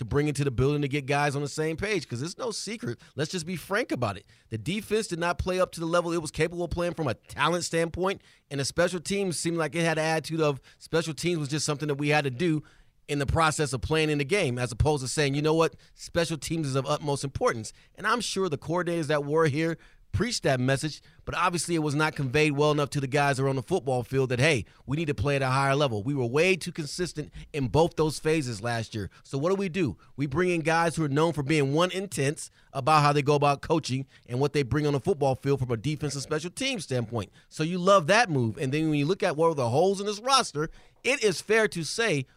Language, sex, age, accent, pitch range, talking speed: English, male, 30-49, American, 140-175 Hz, 270 wpm